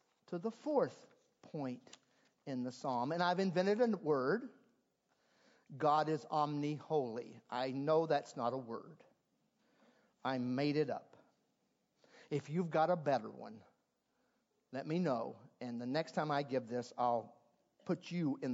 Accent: American